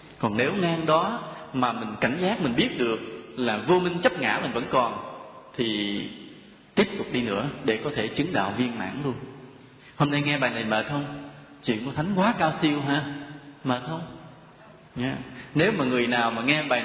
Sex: male